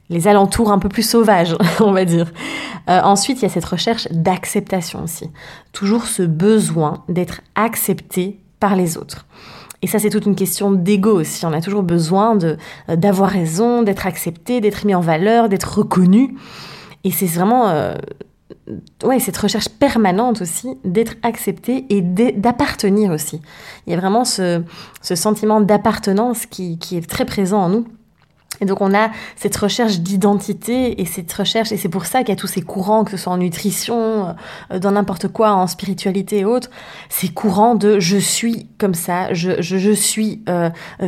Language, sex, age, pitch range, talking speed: French, female, 20-39, 180-215 Hz, 180 wpm